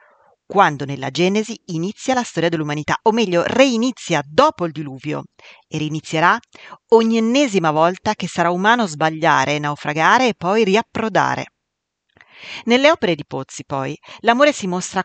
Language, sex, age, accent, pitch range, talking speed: Italian, female, 40-59, native, 155-225 Hz, 135 wpm